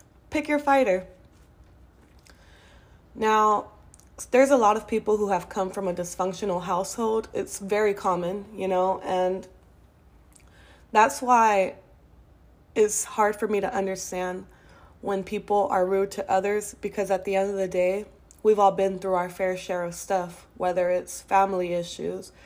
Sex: female